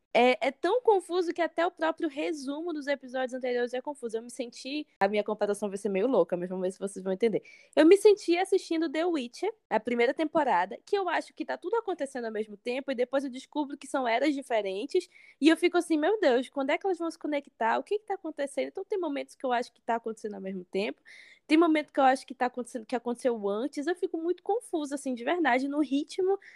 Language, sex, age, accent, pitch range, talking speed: Portuguese, female, 10-29, Brazilian, 235-330 Hz, 245 wpm